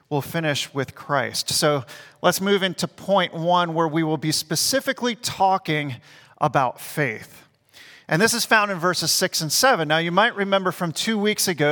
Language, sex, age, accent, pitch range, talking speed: English, male, 40-59, American, 170-220 Hz, 180 wpm